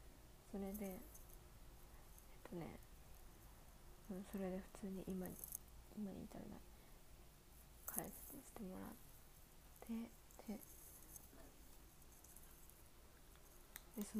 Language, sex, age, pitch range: Japanese, female, 20-39, 185-215 Hz